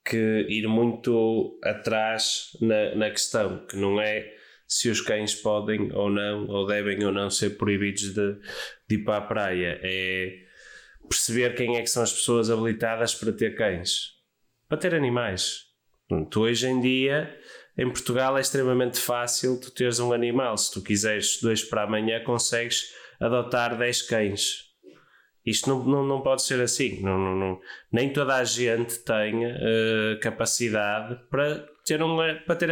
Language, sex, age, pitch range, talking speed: Portuguese, male, 20-39, 110-140 Hz, 150 wpm